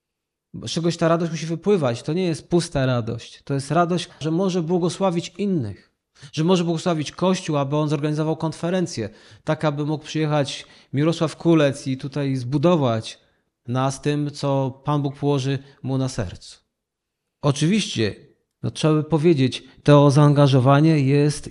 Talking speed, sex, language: 140 wpm, male, Polish